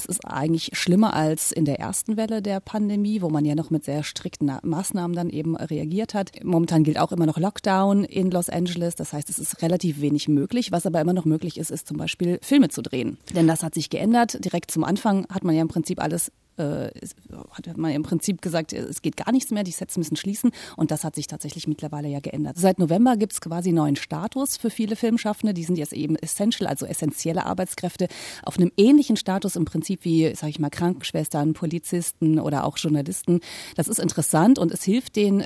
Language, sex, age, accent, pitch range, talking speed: German, female, 30-49, German, 155-190 Hz, 215 wpm